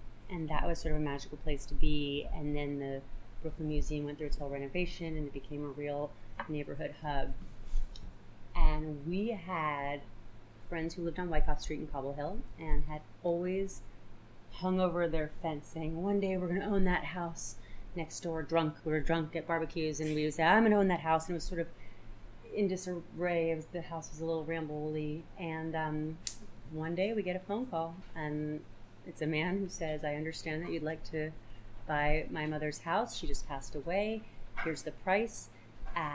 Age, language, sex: 30-49, English, female